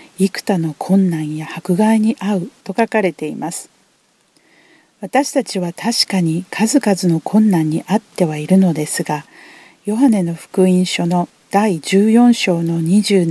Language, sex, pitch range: Japanese, female, 170-215 Hz